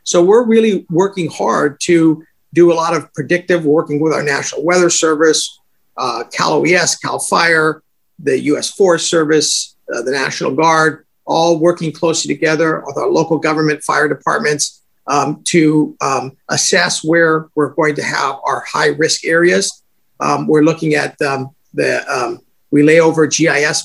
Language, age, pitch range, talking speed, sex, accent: English, 50-69, 150-175 Hz, 160 wpm, male, American